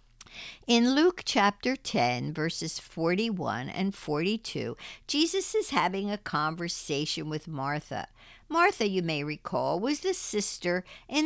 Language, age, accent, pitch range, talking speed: English, 60-79, American, 165-260 Hz, 125 wpm